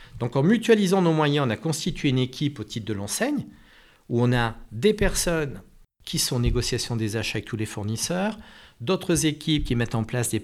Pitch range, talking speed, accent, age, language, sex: 115-145 Hz, 205 wpm, French, 50-69, French, male